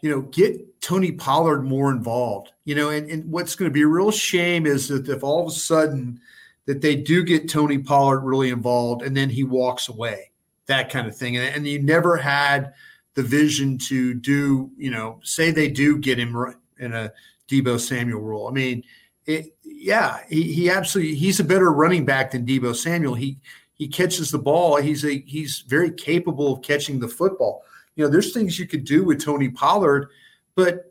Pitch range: 135-165 Hz